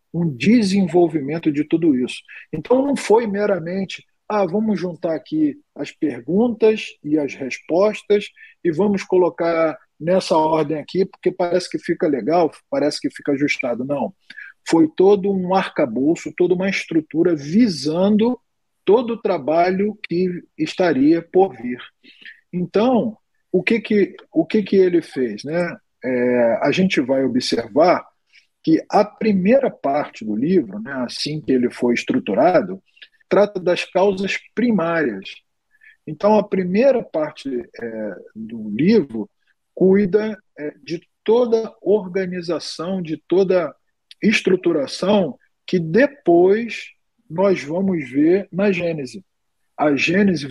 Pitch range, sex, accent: 160-215 Hz, male, Brazilian